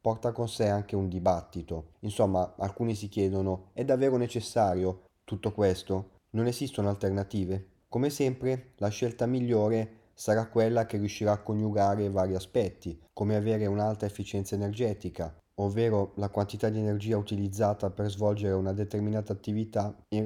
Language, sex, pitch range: Italian, male, 100-115 Hz